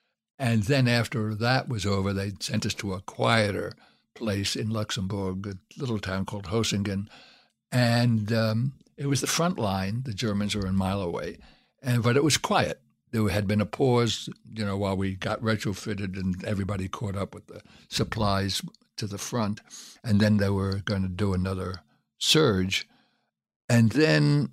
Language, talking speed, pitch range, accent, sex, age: English, 170 wpm, 100-125 Hz, American, male, 60-79